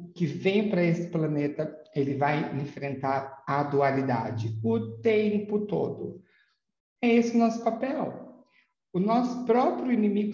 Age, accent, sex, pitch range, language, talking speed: 50-69, Brazilian, male, 125-195 Hz, Portuguese, 130 wpm